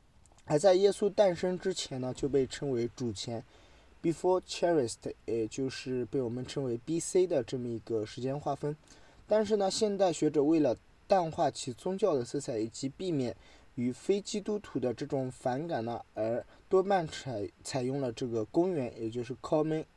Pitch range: 120-155 Hz